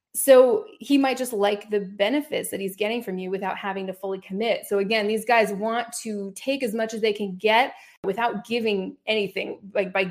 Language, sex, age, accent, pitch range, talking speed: English, female, 20-39, American, 200-240 Hz, 210 wpm